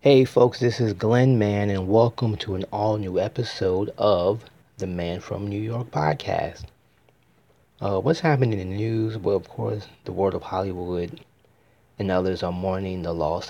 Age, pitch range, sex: 30-49, 95-110 Hz, male